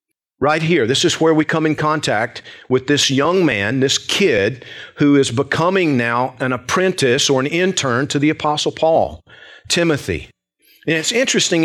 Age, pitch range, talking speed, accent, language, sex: 40-59, 130-160 Hz, 165 wpm, American, English, male